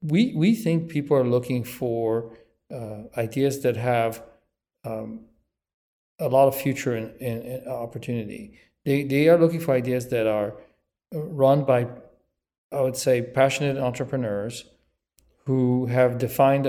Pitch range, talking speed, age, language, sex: 115-140 Hz, 140 wpm, 40-59, English, male